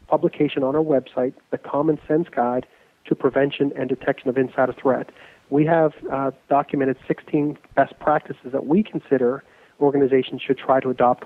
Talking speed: 160 wpm